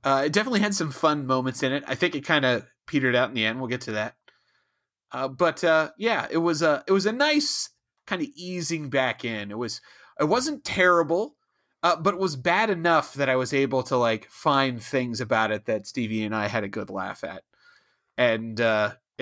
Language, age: English, 30-49